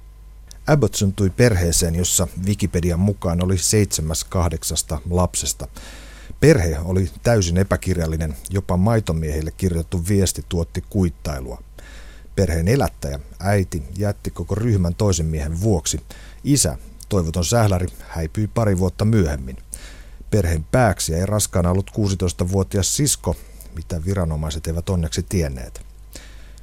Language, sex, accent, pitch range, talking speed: Finnish, male, native, 85-100 Hz, 110 wpm